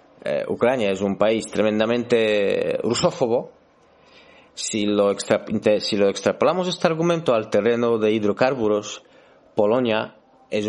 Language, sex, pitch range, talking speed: Spanish, male, 100-125 Hz, 120 wpm